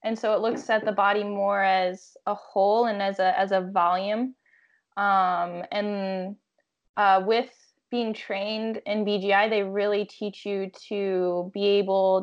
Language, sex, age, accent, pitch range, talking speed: English, female, 10-29, American, 195-235 Hz, 155 wpm